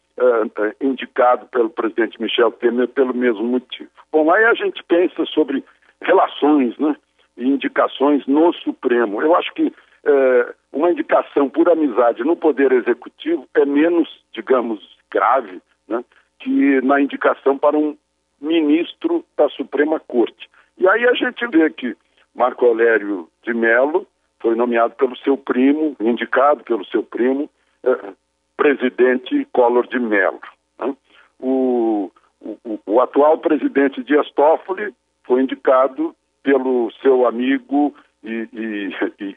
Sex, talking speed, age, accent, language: male, 130 wpm, 60-79, Brazilian, Portuguese